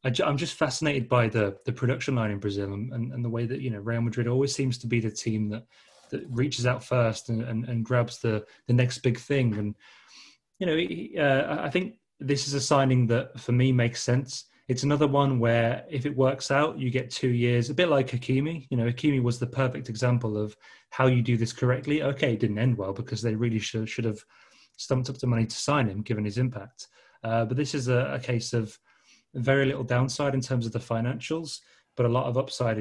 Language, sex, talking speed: English, male, 230 wpm